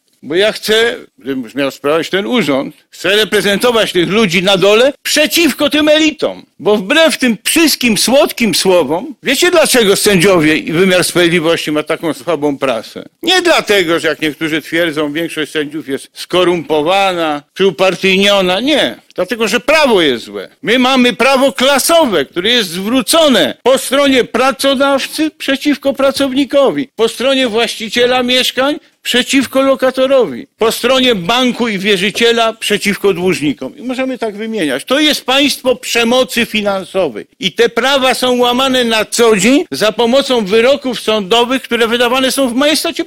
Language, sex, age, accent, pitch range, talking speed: Polish, male, 50-69, native, 205-270 Hz, 140 wpm